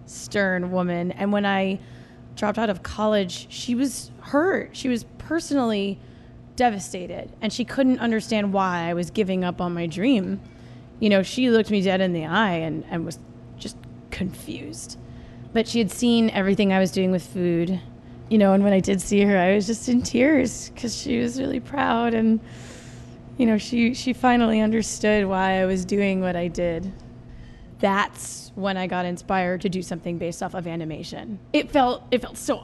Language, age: English, 20-39